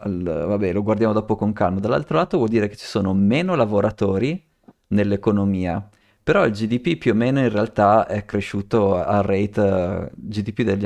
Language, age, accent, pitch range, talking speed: Italian, 30-49, native, 100-120 Hz, 165 wpm